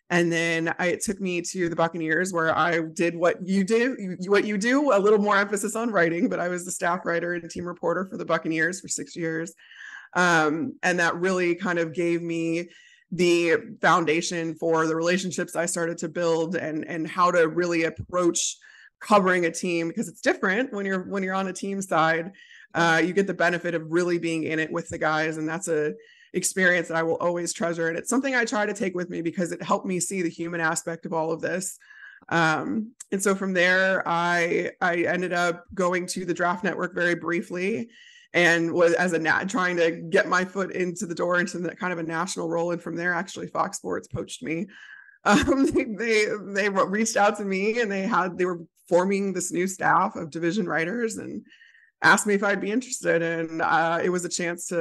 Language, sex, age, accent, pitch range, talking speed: English, female, 20-39, American, 170-200 Hz, 215 wpm